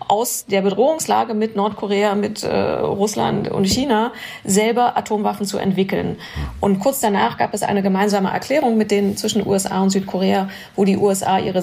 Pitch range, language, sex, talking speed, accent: 195-230 Hz, German, female, 165 wpm, German